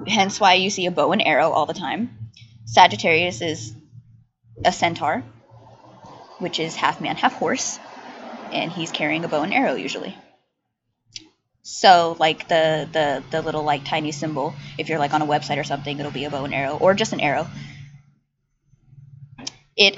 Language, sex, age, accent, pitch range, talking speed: English, female, 20-39, American, 135-220 Hz, 170 wpm